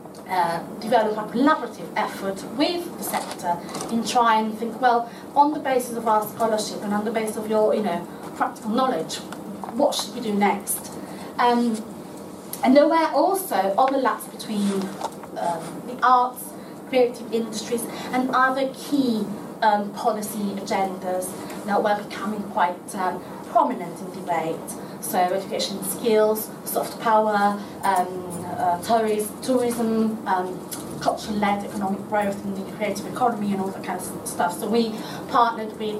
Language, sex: English, female